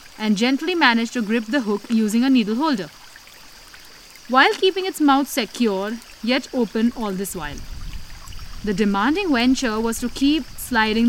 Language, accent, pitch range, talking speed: English, Indian, 205-255 Hz, 150 wpm